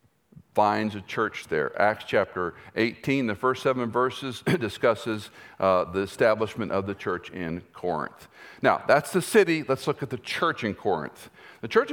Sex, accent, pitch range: male, American, 110-165 Hz